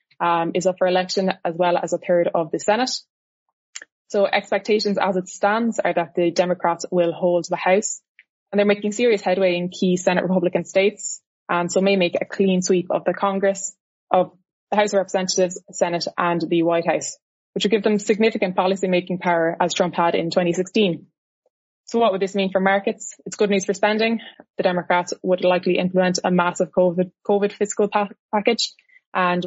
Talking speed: 190 wpm